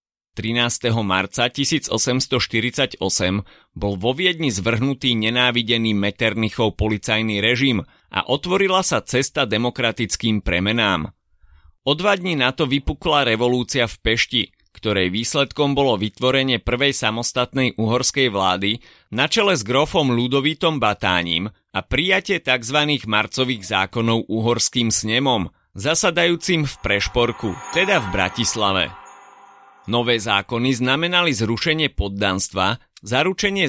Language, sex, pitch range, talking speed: Slovak, male, 105-140 Hz, 105 wpm